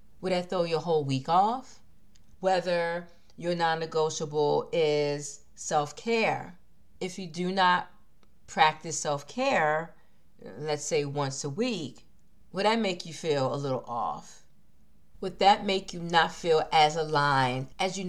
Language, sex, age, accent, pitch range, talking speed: English, female, 40-59, American, 155-200 Hz, 135 wpm